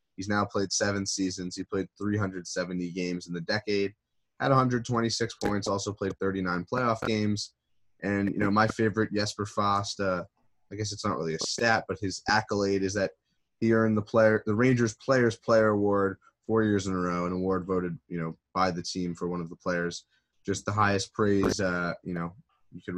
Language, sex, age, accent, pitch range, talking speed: English, male, 20-39, American, 90-105 Hz, 200 wpm